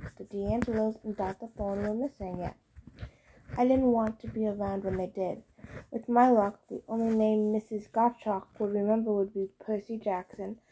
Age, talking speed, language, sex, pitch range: 20-39, 175 wpm, English, female, 205-235 Hz